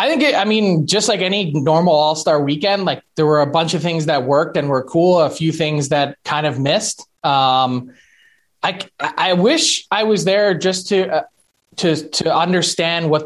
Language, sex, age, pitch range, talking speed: English, male, 20-39, 150-190 Hz, 205 wpm